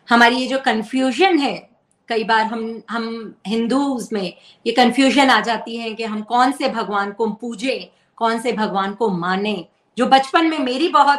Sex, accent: female, native